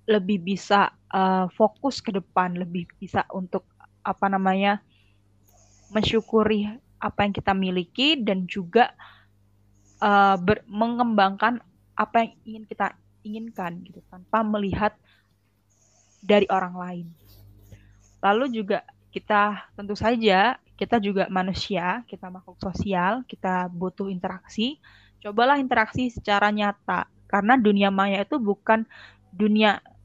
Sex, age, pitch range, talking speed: female, 20-39, 185-215 Hz, 110 wpm